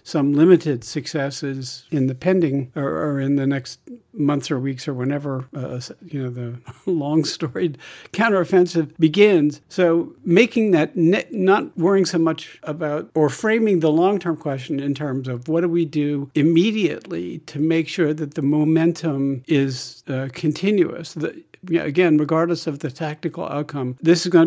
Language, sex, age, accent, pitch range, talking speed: English, male, 60-79, American, 135-170 Hz, 165 wpm